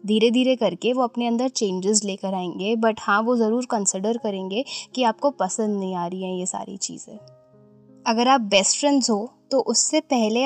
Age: 20-39